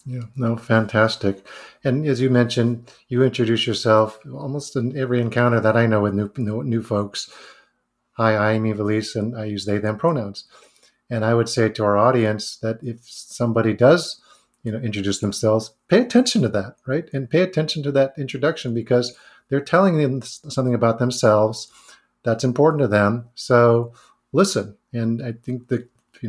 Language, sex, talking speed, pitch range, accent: English, male, 170 wpm, 110-125 Hz, American